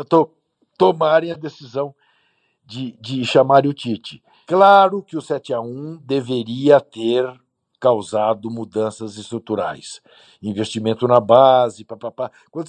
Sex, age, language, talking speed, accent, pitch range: male, 60-79, Portuguese, 100 wpm, Brazilian, 115-155 Hz